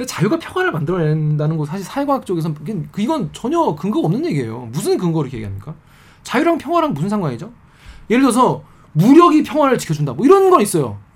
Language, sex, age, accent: Korean, male, 20-39, native